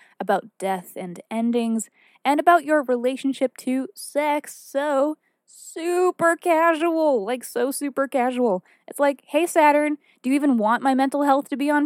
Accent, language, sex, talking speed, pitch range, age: American, English, female, 155 wpm, 225-290 Hz, 20-39